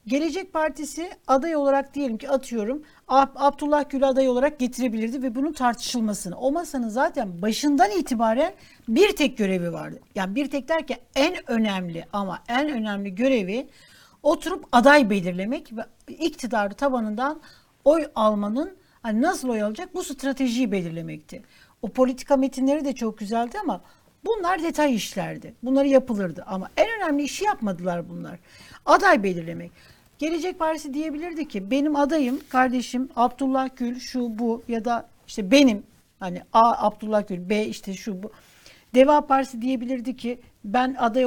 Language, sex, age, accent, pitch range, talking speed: Turkish, female, 60-79, native, 225-295 Hz, 140 wpm